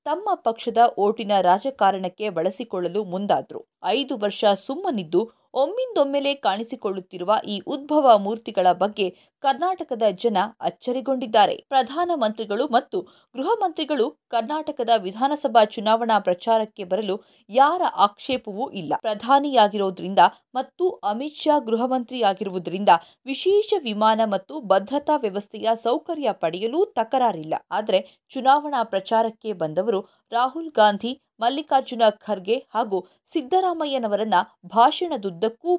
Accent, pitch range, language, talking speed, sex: native, 205-275 Hz, Kannada, 90 wpm, female